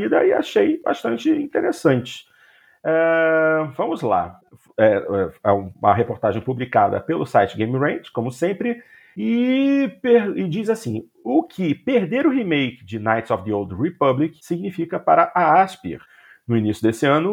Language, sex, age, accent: Portuguese, male, 40-59, Brazilian